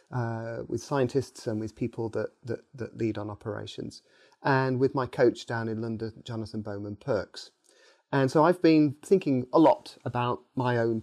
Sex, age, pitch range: male, 30-49, 115-135 Hz